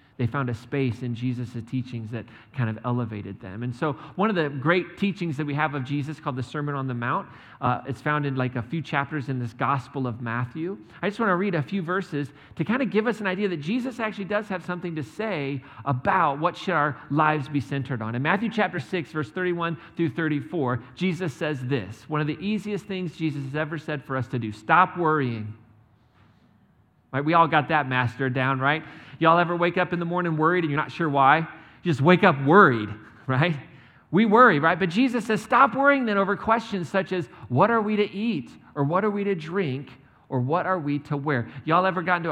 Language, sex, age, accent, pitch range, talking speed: English, male, 40-59, American, 130-175 Hz, 230 wpm